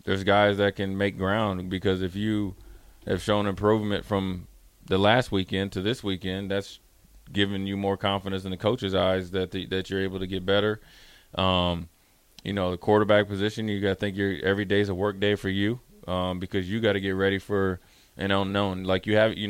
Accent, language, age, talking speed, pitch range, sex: American, English, 20-39, 210 wpm, 95-105 Hz, male